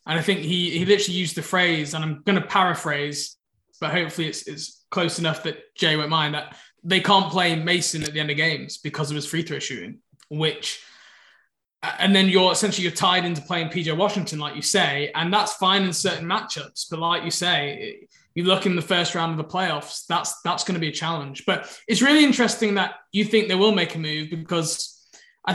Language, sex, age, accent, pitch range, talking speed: English, male, 20-39, British, 165-205 Hz, 220 wpm